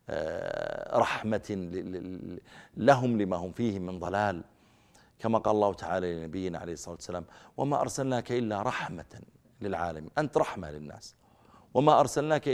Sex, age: male, 50-69